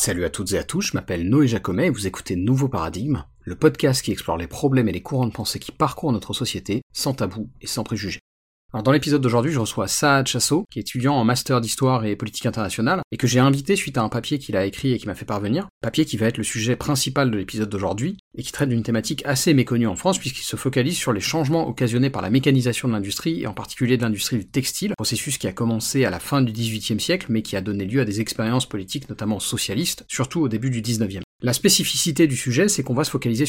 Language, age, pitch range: French, 40-59, 110-140 Hz